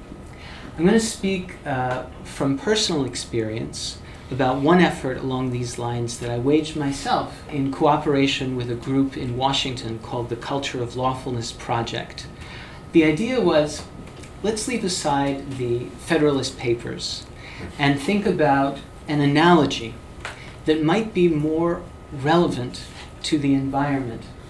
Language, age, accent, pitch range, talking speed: English, 40-59, American, 125-155 Hz, 130 wpm